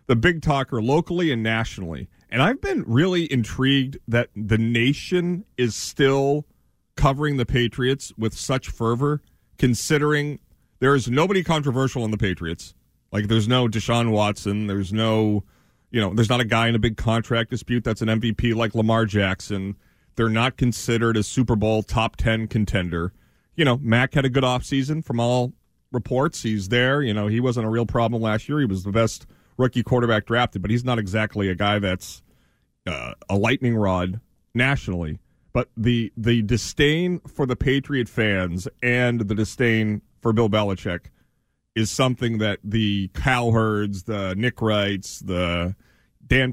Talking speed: 165 wpm